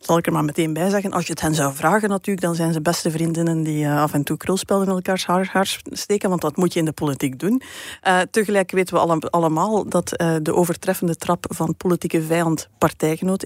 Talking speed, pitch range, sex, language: 225 wpm, 165-205 Hz, female, Dutch